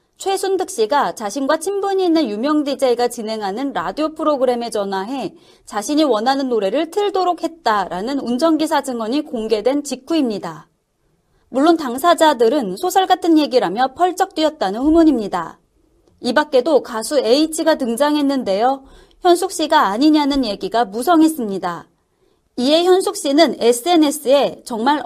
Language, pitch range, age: Korean, 240-325 Hz, 30-49